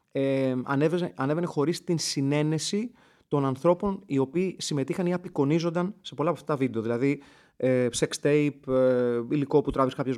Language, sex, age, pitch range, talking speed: Greek, male, 30-49, 125-170 Hz, 155 wpm